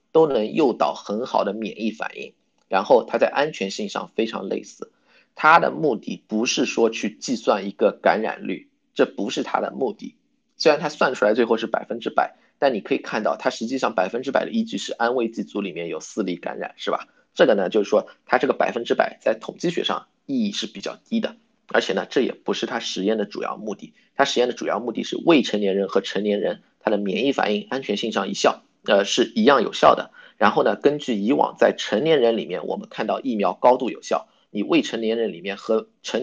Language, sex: Chinese, male